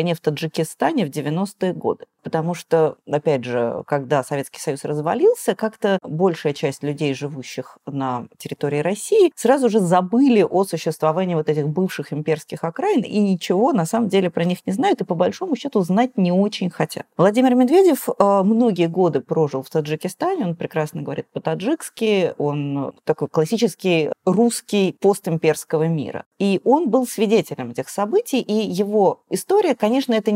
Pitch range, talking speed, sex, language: 155-220 Hz, 150 wpm, female, Russian